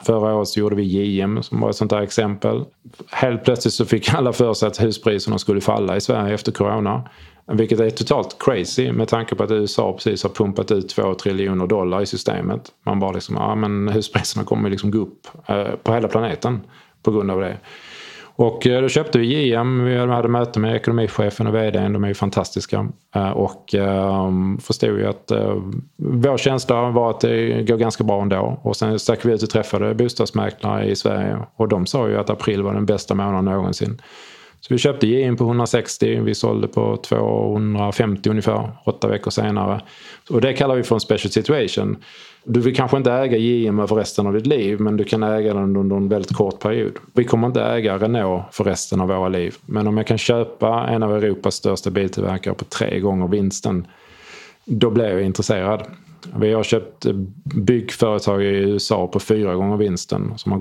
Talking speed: 195 wpm